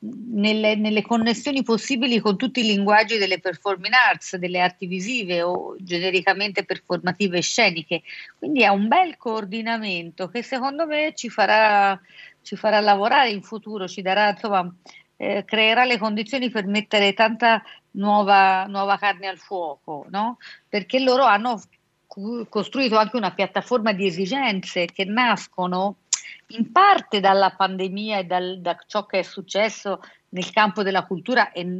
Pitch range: 185-230 Hz